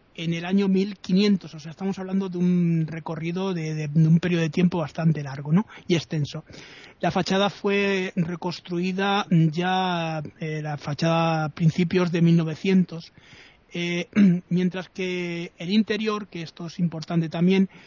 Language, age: Spanish, 30-49